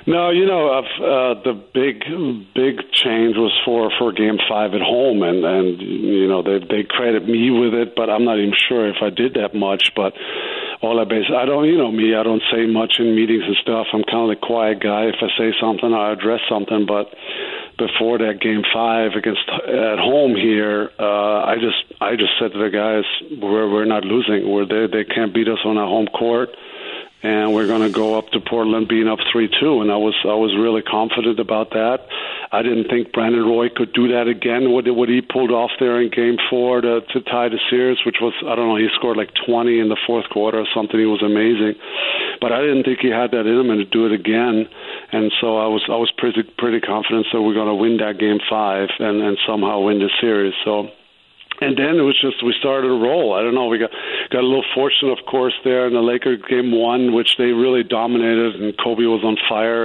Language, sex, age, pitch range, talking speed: English, male, 50-69, 110-120 Hz, 230 wpm